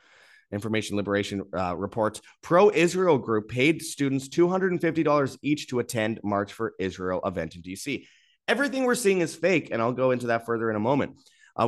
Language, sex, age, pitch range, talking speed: English, male, 30-49, 100-145 Hz, 170 wpm